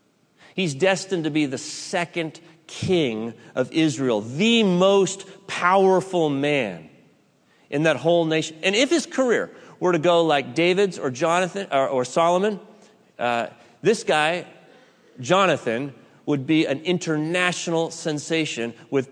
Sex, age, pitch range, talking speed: male, 30-49, 130-170 Hz, 130 wpm